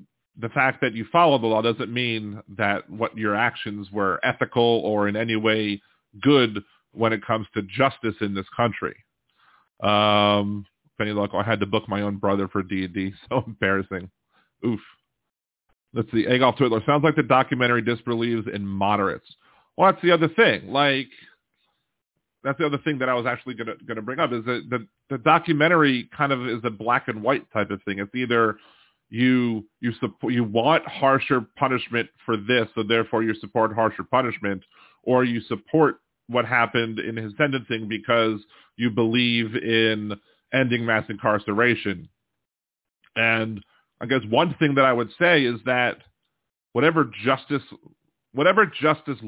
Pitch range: 105-130 Hz